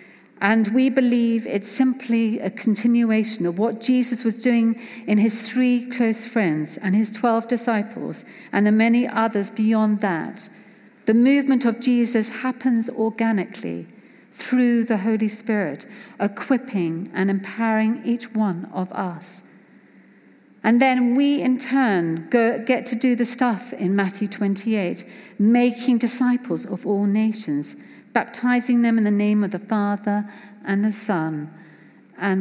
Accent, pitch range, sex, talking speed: British, 200-240 Hz, female, 135 wpm